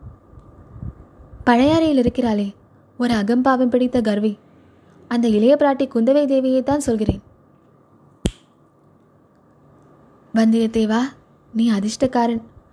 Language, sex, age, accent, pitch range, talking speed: Tamil, female, 20-39, native, 225-270 Hz, 65 wpm